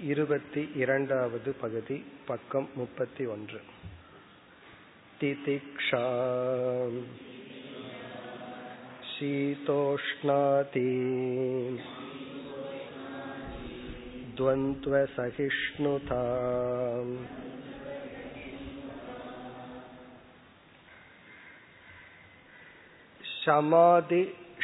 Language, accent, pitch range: Tamil, native, 130-155 Hz